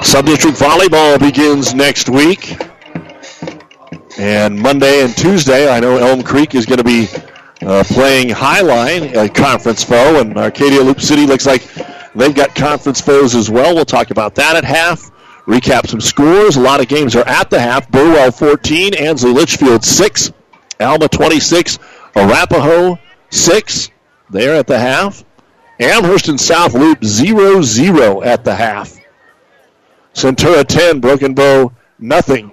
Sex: male